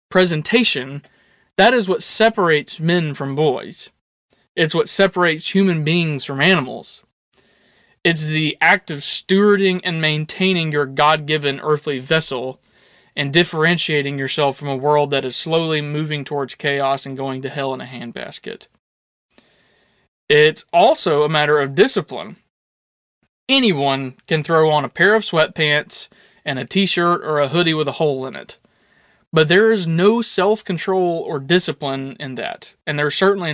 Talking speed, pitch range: 145 wpm, 145-200 Hz